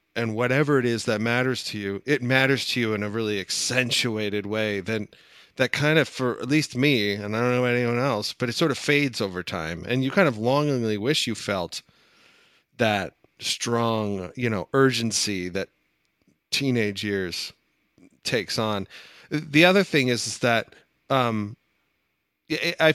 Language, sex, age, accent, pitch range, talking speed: English, male, 30-49, American, 110-135 Hz, 170 wpm